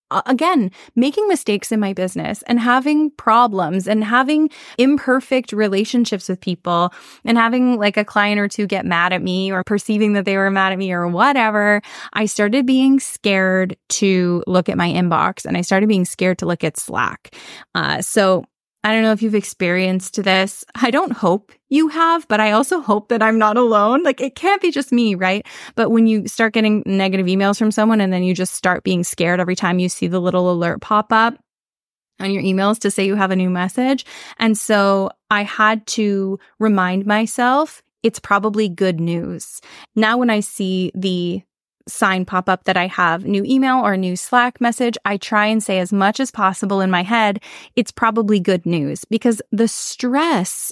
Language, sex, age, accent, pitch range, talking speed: English, female, 20-39, American, 185-240 Hz, 195 wpm